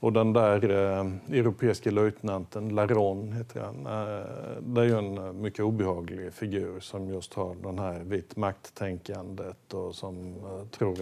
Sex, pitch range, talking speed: male, 90-105 Hz, 145 wpm